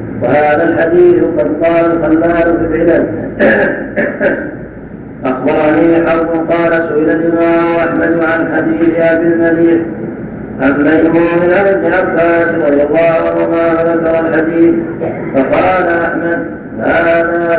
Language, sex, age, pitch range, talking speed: Arabic, male, 40-59, 165-170 Hz, 100 wpm